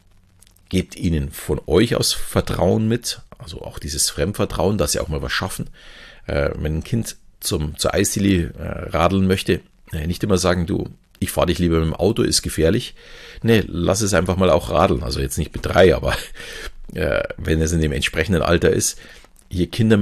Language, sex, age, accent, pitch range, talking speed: German, male, 50-69, German, 80-100 Hz, 190 wpm